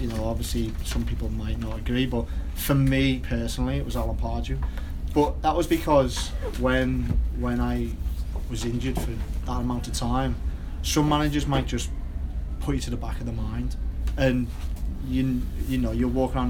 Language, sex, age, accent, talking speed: English, male, 30-49, British, 180 wpm